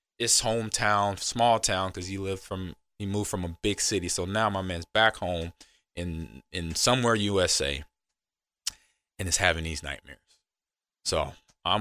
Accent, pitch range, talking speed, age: American, 85-115 Hz, 160 wpm, 20-39